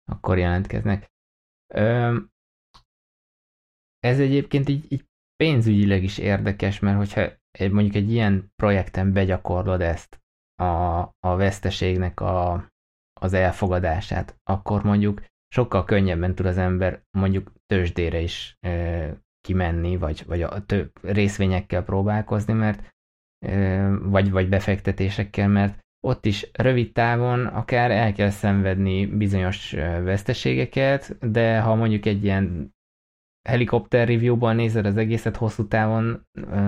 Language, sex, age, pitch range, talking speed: Hungarian, male, 20-39, 90-105 Hz, 110 wpm